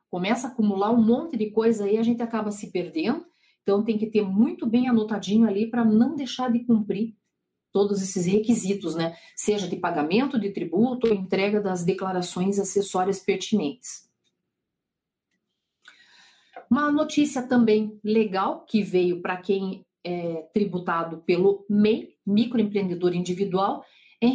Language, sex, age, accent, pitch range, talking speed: Portuguese, female, 40-59, Brazilian, 200-245 Hz, 140 wpm